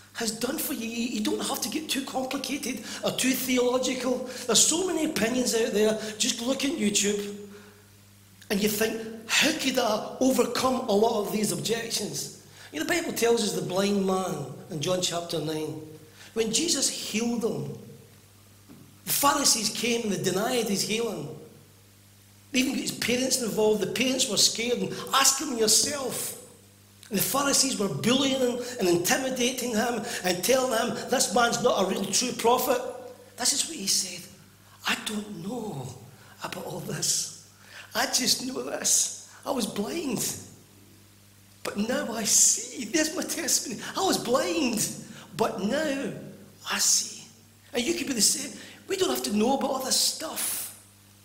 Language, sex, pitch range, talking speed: English, male, 170-250 Hz, 165 wpm